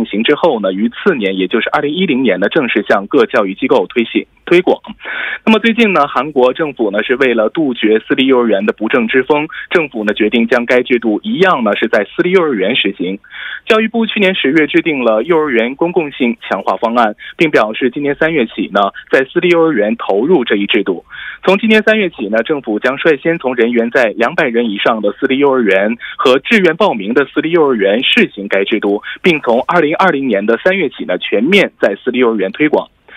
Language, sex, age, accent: Korean, male, 20-39, Chinese